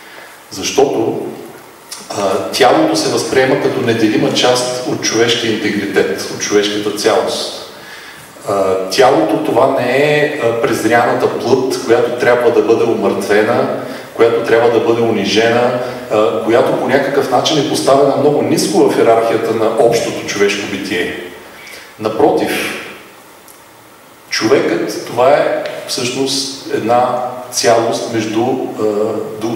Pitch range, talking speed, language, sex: 110-150 Hz, 110 wpm, Bulgarian, male